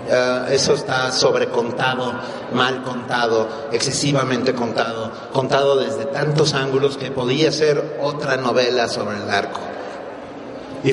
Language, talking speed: Spanish, 120 wpm